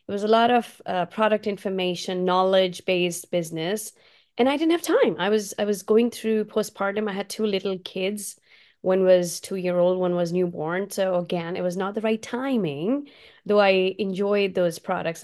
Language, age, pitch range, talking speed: English, 30-49, 180-210 Hz, 180 wpm